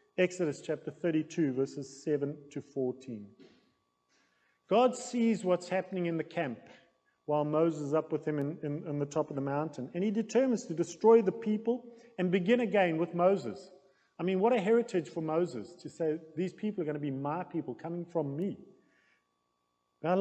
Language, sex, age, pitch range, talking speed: English, male, 40-59, 145-185 Hz, 180 wpm